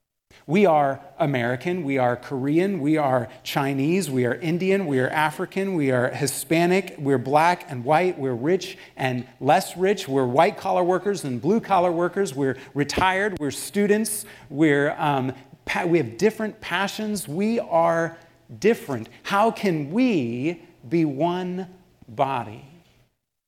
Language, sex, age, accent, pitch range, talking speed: English, male, 40-59, American, 130-185 Hz, 140 wpm